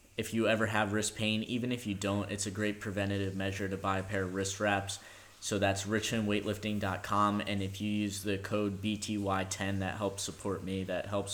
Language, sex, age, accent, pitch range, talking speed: English, male, 10-29, American, 95-105 Hz, 200 wpm